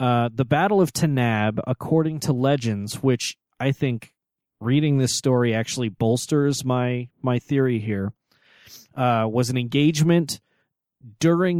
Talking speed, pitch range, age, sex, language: 130 wpm, 115-140 Hz, 30-49, male, English